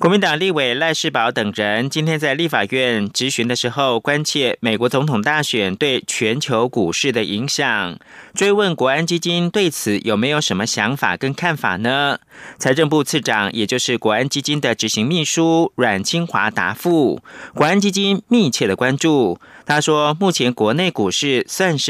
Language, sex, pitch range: German, male, 125-170 Hz